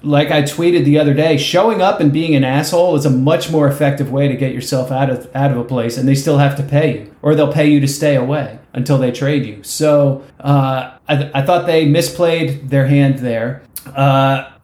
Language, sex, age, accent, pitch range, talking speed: English, male, 30-49, American, 135-160 Hz, 230 wpm